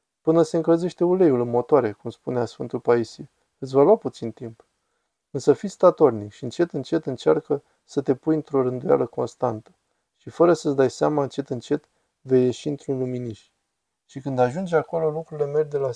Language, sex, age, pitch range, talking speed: Romanian, male, 20-39, 120-150 Hz, 175 wpm